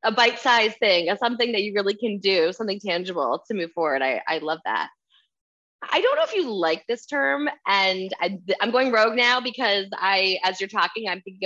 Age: 20-39